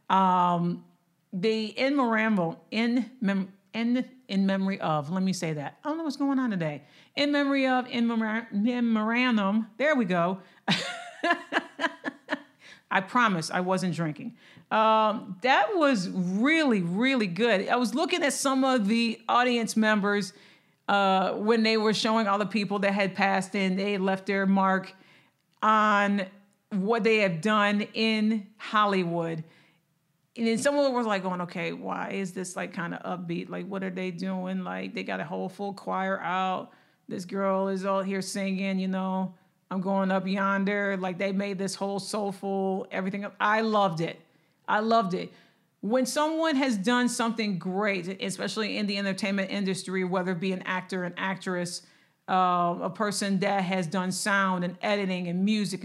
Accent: American